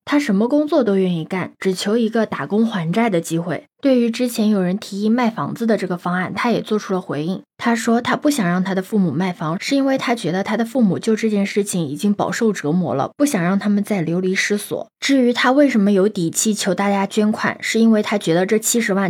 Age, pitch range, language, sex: 20-39, 185-235 Hz, Chinese, female